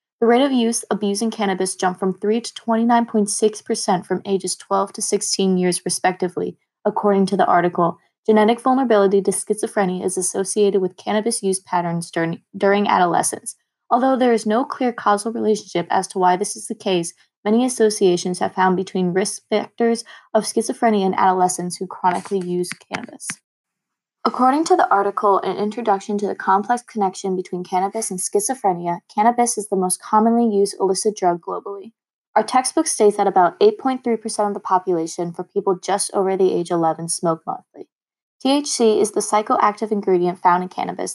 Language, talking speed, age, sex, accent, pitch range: English, 165 wpm, 20-39, female, American, 185-220 Hz